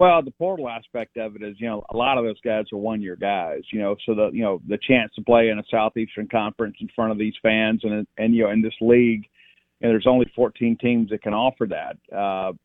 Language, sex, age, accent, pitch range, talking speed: English, male, 40-59, American, 110-125 Hz, 250 wpm